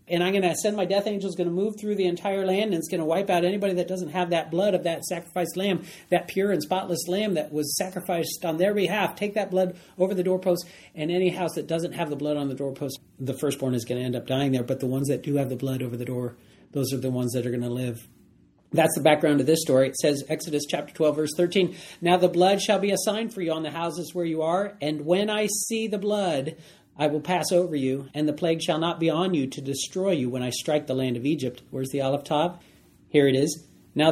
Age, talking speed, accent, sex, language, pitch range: 40-59, 270 wpm, American, male, English, 130-180 Hz